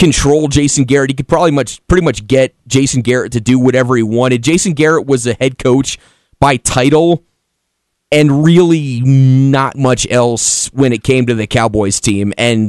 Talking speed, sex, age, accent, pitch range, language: 180 wpm, male, 30-49, American, 125-175 Hz, English